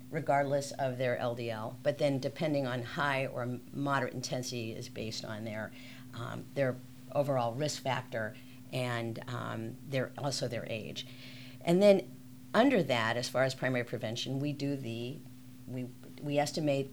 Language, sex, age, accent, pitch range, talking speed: English, female, 50-69, American, 125-150 Hz, 150 wpm